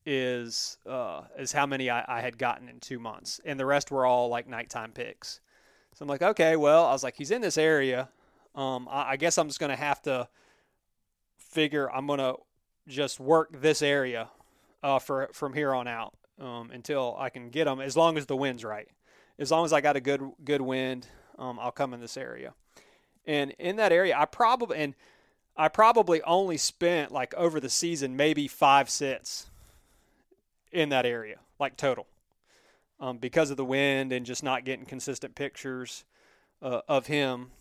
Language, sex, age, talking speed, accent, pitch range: English, male, 30-49, 190 wpm, American, 130-155 Hz